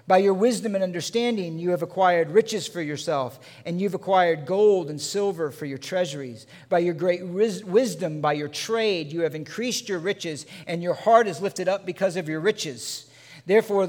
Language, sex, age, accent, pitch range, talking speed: English, male, 50-69, American, 150-195 Hz, 185 wpm